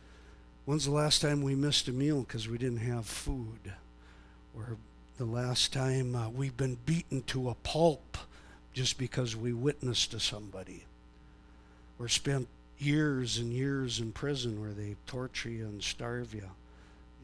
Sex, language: male, English